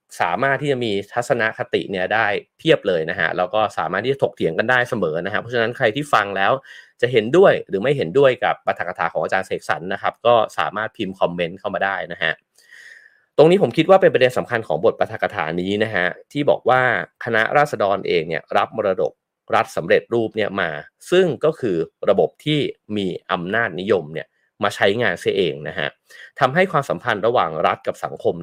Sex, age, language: male, 30-49, English